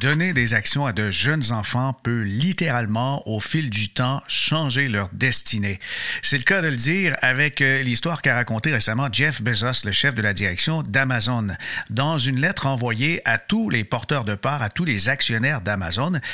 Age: 50-69